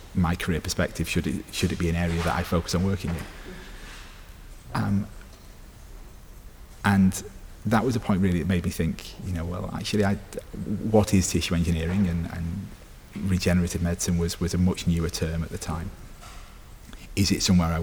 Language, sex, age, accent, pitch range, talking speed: Portuguese, male, 30-49, British, 85-95 Hz, 180 wpm